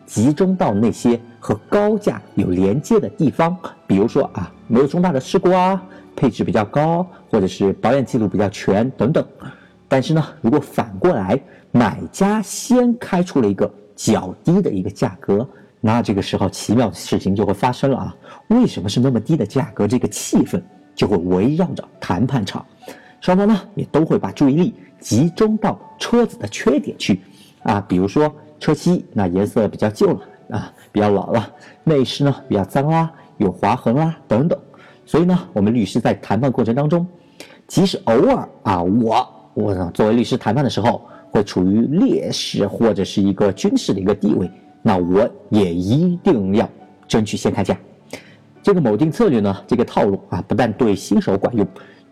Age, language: 50-69, Chinese